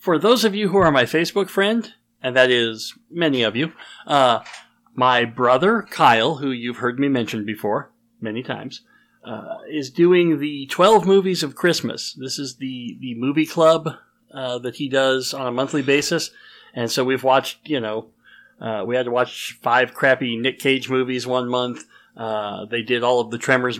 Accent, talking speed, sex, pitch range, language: American, 185 wpm, male, 120-160 Hz, English